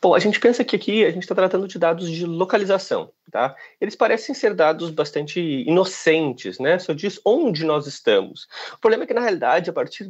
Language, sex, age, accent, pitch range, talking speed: Portuguese, male, 30-49, Brazilian, 145-220 Hz, 210 wpm